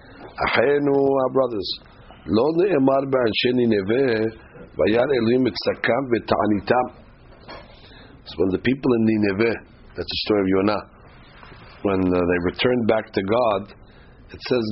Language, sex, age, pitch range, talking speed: English, male, 50-69, 95-125 Hz, 85 wpm